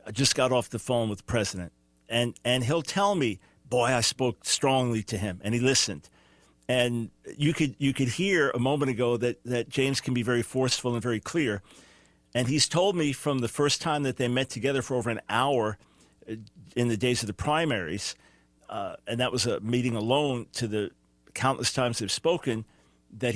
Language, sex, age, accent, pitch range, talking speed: English, male, 50-69, American, 115-145 Hz, 200 wpm